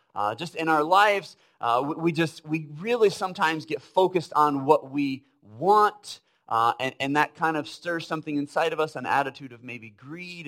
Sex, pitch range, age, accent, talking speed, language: male, 125-170 Hz, 30-49, American, 190 wpm, English